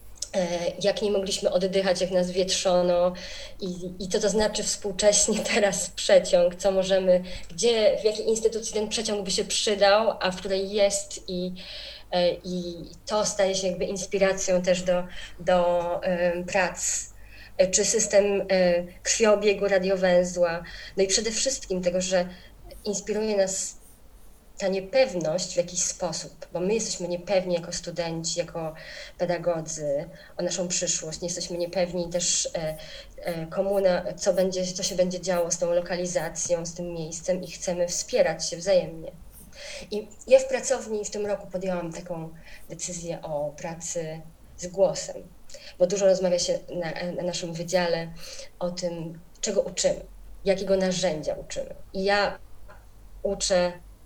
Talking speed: 140 wpm